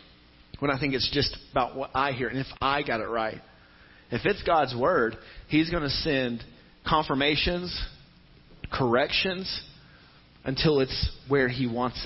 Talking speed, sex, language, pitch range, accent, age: 150 wpm, male, English, 130-175 Hz, American, 40-59